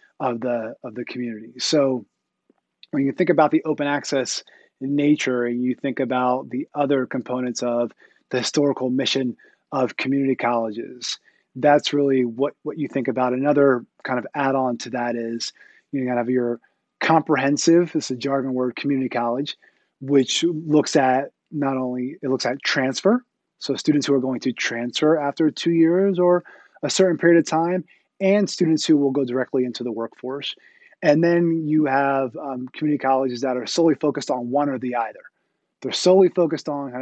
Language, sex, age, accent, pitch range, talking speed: English, male, 30-49, American, 125-150 Hz, 180 wpm